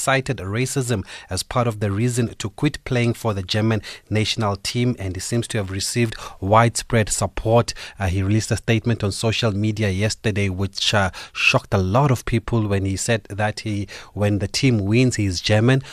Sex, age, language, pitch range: male, 30-49, English, 100-115 Hz